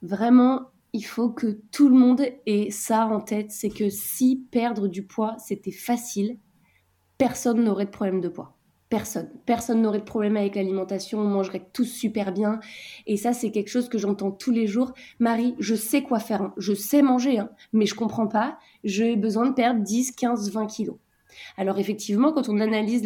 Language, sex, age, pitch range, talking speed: French, female, 20-39, 200-240 Hz, 200 wpm